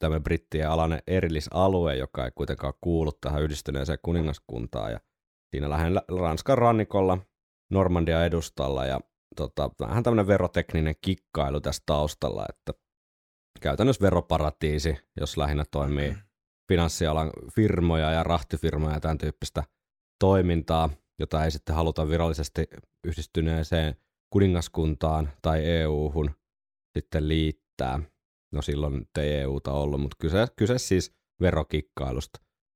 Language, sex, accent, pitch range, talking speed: Finnish, male, native, 75-85 Hz, 110 wpm